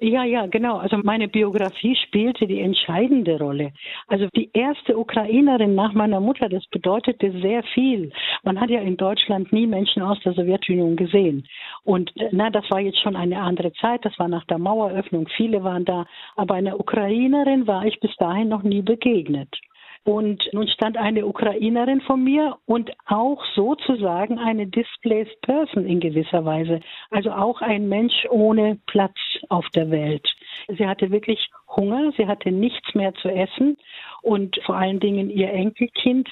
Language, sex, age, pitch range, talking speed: German, female, 60-79, 195-235 Hz, 165 wpm